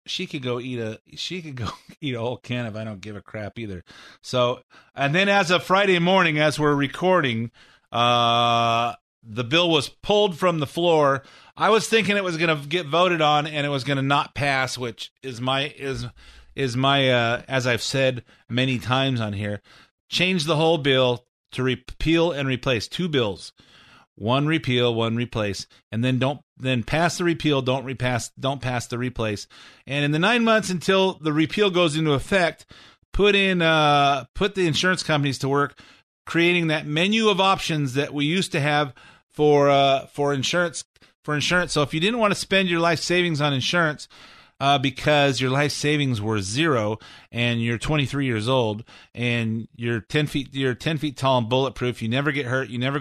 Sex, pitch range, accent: male, 120-160 Hz, American